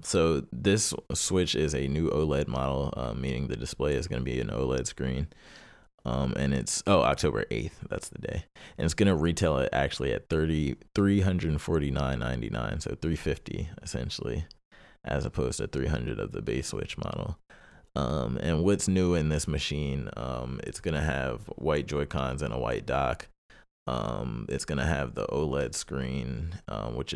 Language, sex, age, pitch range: English, male, 20-39, 65-80 Hz